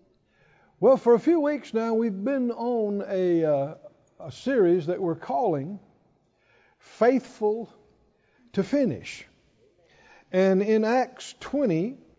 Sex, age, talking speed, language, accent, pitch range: male, 60-79, 115 wpm, English, American, 180-240 Hz